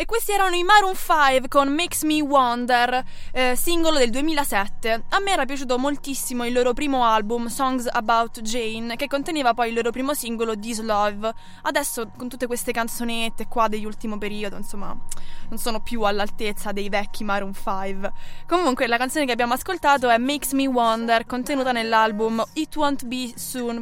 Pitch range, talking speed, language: 225-275 Hz, 170 wpm, Italian